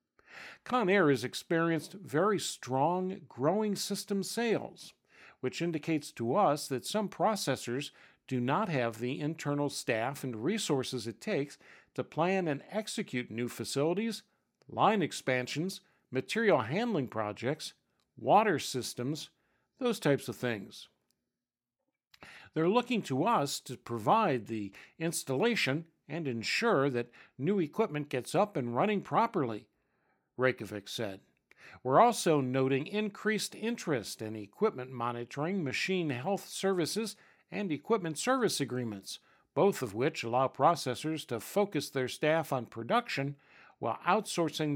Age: 50-69